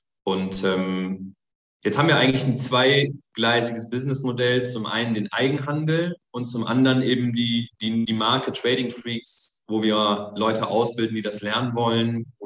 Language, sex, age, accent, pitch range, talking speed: German, male, 30-49, German, 115-140 Hz, 155 wpm